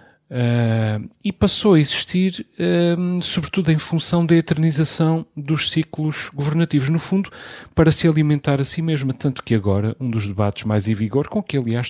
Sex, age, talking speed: male, 30-49, 170 wpm